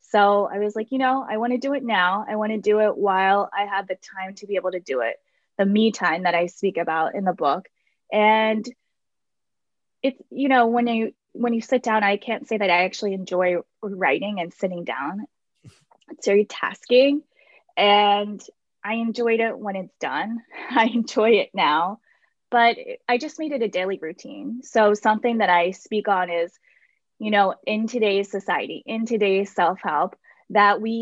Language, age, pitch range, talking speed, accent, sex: English, 20-39, 195-230 Hz, 190 wpm, American, female